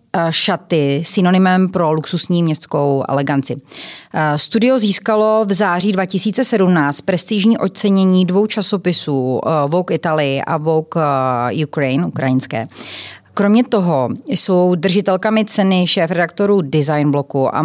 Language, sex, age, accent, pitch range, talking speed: Czech, female, 30-49, native, 145-195 Hz, 100 wpm